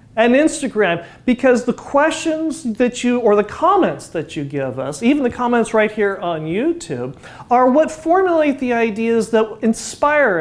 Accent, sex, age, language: American, male, 40-59, English